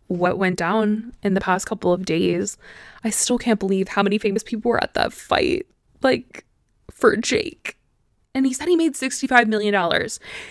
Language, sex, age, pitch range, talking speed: English, female, 20-39, 190-245 Hz, 185 wpm